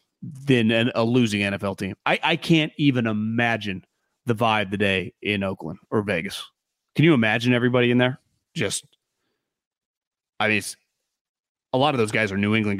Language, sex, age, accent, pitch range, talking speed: English, male, 30-49, American, 115-180 Hz, 170 wpm